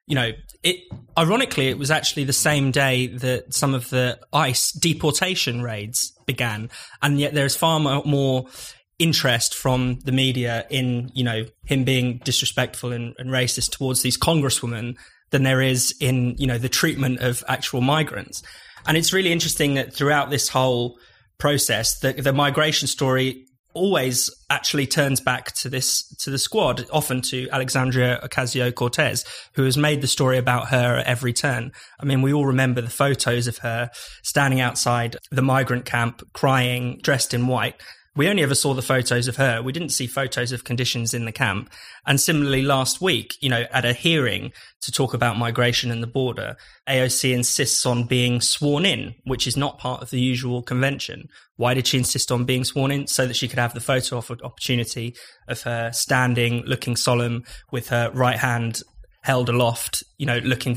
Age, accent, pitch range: 20-39, British, 125-140 Hz